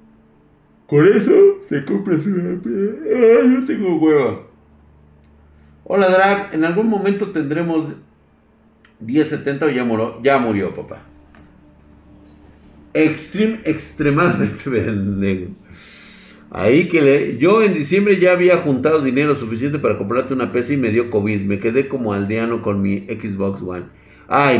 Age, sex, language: 50-69, male, Spanish